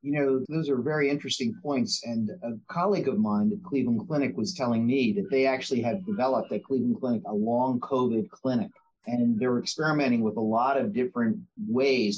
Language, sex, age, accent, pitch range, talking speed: English, male, 50-69, American, 135-205 Hz, 190 wpm